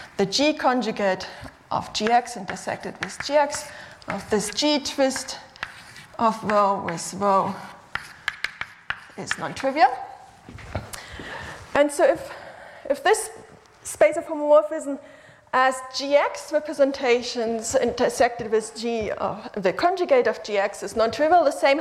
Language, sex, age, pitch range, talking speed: French, female, 30-49, 210-290 Hz, 115 wpm